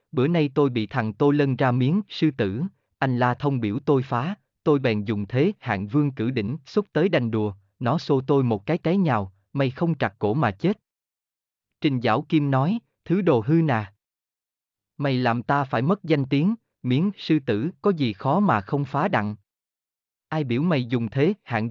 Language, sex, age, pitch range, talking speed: Vietnamese, male, 20-39, 115-160 Hz, 200 wpm